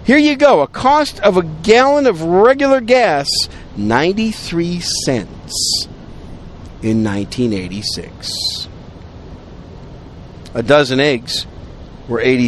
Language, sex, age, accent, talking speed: English, male, 50-69, American, 65 wpm